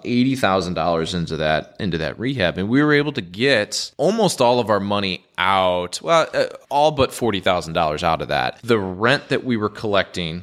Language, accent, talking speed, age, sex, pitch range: English, American, 205 wpm, 20-39, male, 90-115 Hz